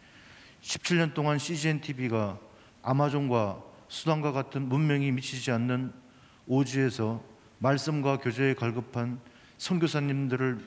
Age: 40-59